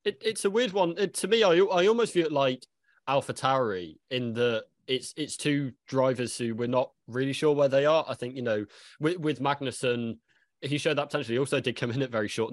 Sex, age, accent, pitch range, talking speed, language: male, 20-39, British, 100-135 Hz, 235 wpm, English